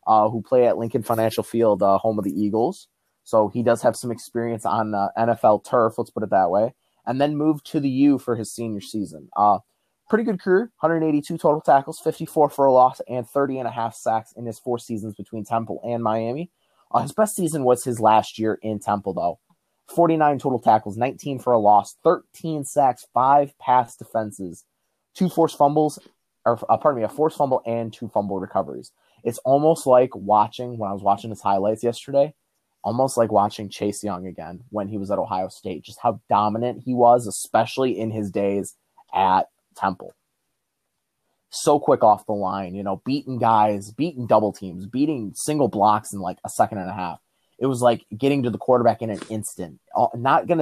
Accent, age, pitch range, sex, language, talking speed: American, 20-39, 105-140 Hz, male, English, 200 wpm